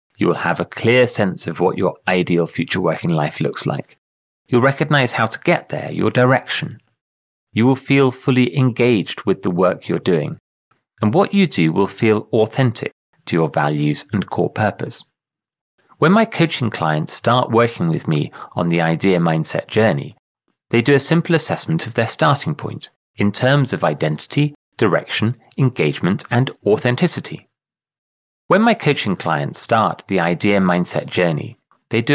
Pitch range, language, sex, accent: 100-150 Hz, English, male, British